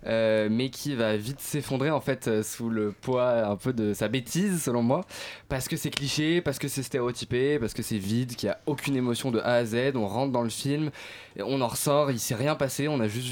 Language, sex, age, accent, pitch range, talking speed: French, male, 20-39, French, 115-155 Hz, 255 wpm